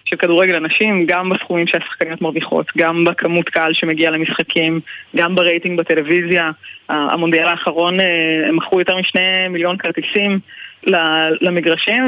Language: Hebrew